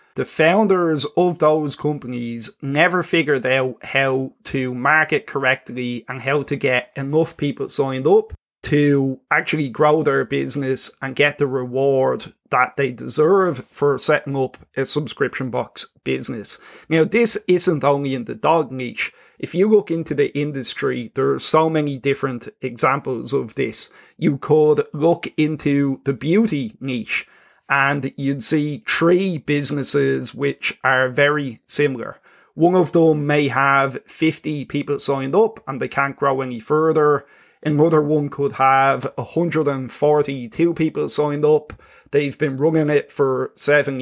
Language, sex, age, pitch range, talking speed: English, male, 30-49, 135-155 Hz, 145 wpm